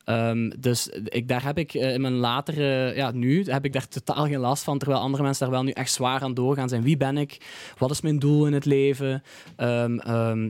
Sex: male